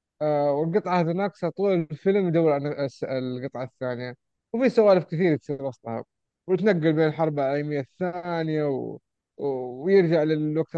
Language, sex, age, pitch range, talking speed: Arabic, male, 20-39, 135-180 Hz, 120 wpm